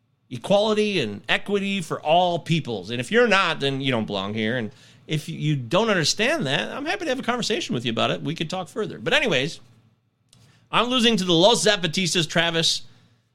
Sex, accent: male, American